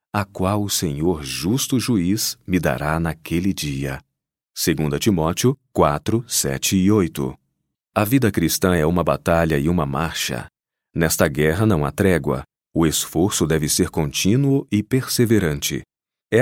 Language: Portuguese